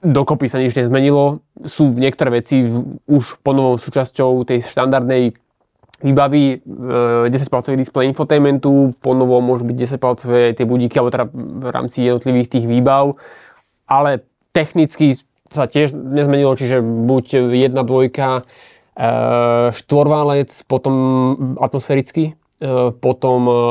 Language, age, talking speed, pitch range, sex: Slovak, 20-39, 105 wpm, 125-140 Hz, male